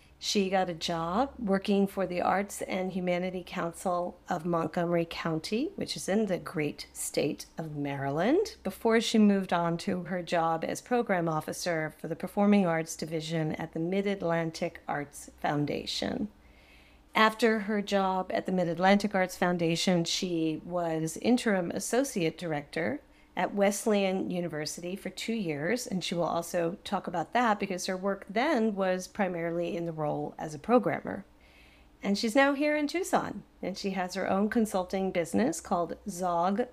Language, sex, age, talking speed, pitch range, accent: English, female, 40-59, 155 wpm, 170-210 Hz, American